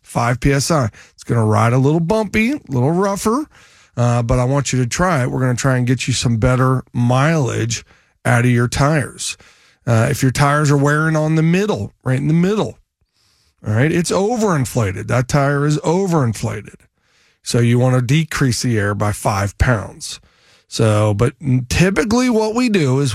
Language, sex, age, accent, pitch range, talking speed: English, male, 40-59, American, 120-155 Hz, 185 wpm